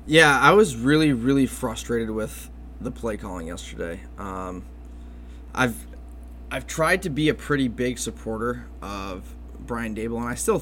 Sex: male